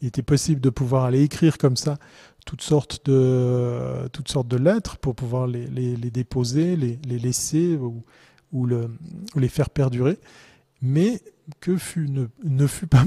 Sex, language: male, French